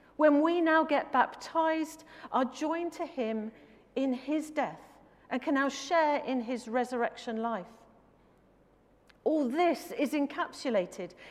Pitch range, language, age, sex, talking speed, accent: 250-305 Hz, English, 40-59, female, 125 wpm, British